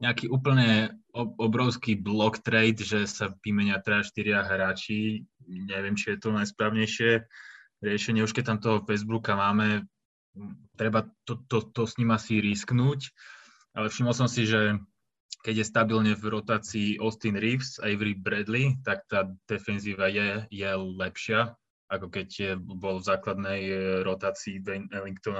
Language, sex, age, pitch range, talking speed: Slovak, male, 20-39, 100-115 Hz, 140 wpm